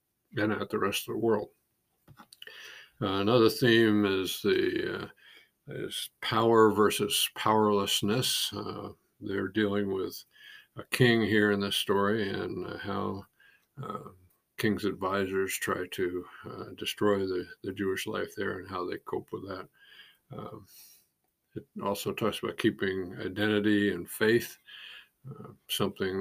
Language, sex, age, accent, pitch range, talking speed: English, male, 50-69, American, 95-110 Hz, 135 wpm